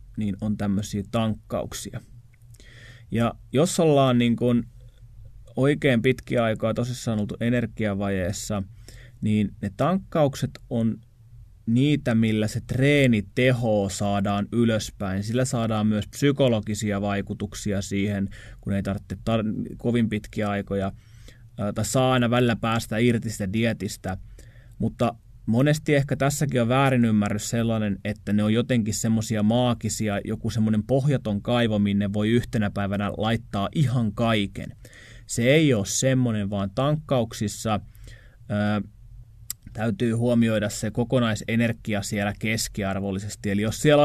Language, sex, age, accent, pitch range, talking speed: Finnish, male, 20-39, native, 105-120 Hz, 120 wpm